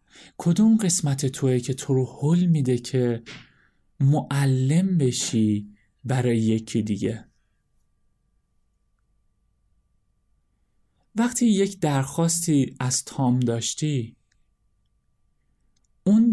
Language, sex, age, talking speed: Persian, male, 30-49, 75 wpm